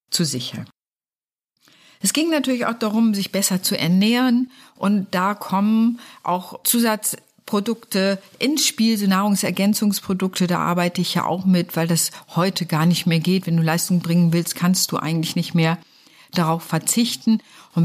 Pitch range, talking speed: 170-210 Hz, 155 wpm